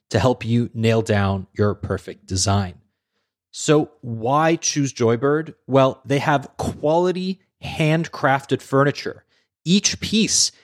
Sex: male